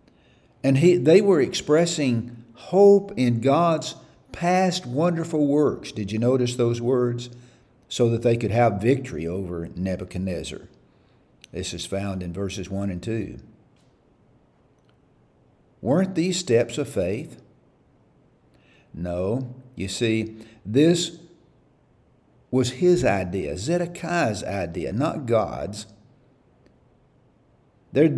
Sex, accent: male, American